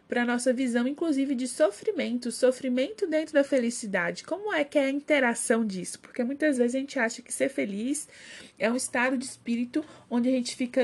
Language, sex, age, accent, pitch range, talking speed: Portuguese, female, 20-39, Brazilian, 225-280 Hz, 200 wpm